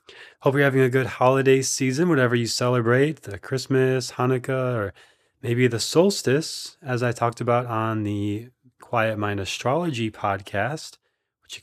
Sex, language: male, English